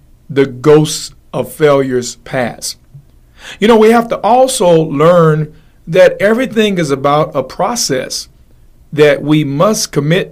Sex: male